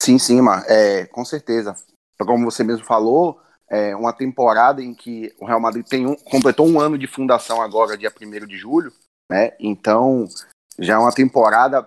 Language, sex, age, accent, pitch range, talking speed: Portuguese, male, 30-49, Brazilian, 110-140 Hz, 180 wpm